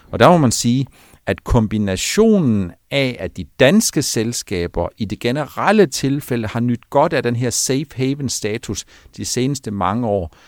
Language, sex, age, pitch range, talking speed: Danish, male, 50-69, 95-130 Hz, 165 wpm